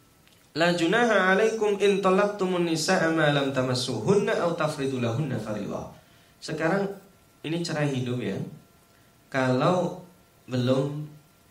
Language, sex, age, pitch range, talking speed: Indonesian, male, 20-39, 120-165 Hz, 90 wpm